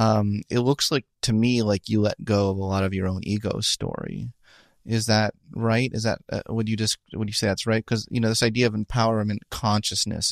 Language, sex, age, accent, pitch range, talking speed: English, male, 30-49, American, 95-120 Hz, 235 wpm